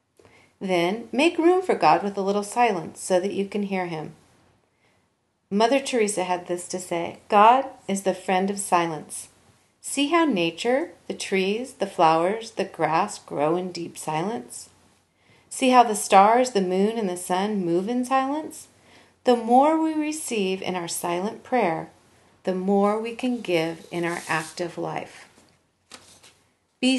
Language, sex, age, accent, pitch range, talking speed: English, female, 40-59, American, 175-225 Hz, 155 wpm